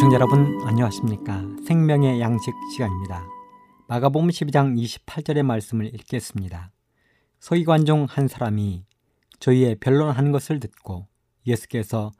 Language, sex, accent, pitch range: Korean, male, native, 110-150 Hz